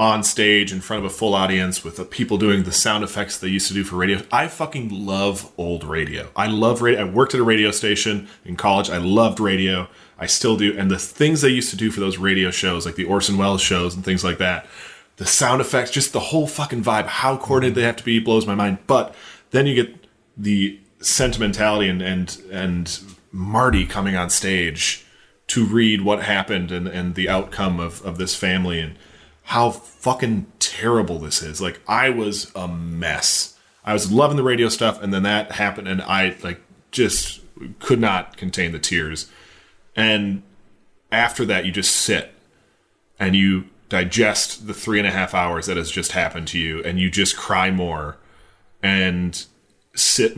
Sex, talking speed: male, 195 wpm